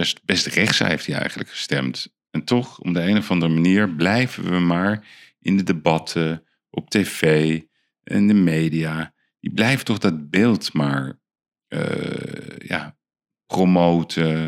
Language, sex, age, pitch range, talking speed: Dutch, male, 40-59, 75-90 Hz, 150 wpm